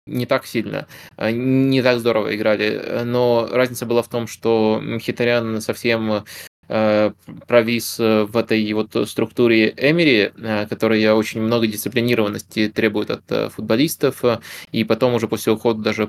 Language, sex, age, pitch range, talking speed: Russian, male, 20-39, 110-125 Hz, 125 wpm